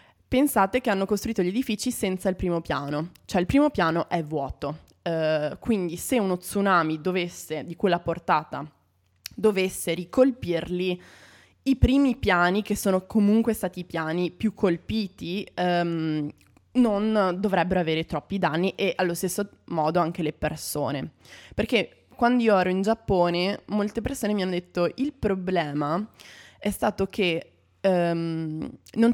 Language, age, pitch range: Italian, 20-39, 165-205 Hz